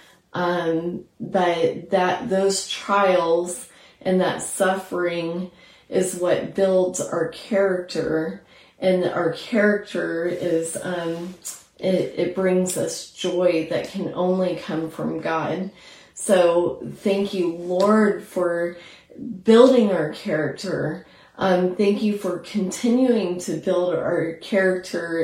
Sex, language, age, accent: female, English, 30-49, American